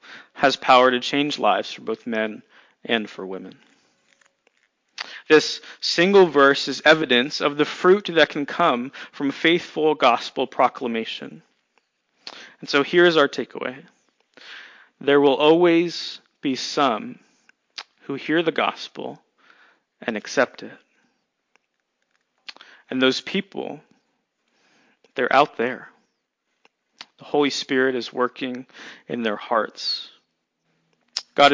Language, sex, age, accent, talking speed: English, male, 40-59, American, 110 wpm